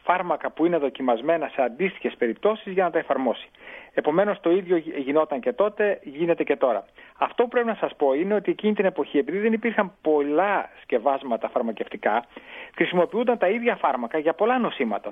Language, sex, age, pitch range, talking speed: Greek, male, 40-59, 140-200 Hz, 180 wpm